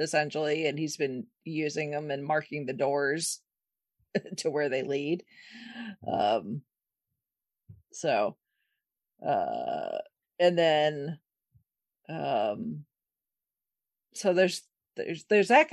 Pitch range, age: 160-265 Hz, 40-59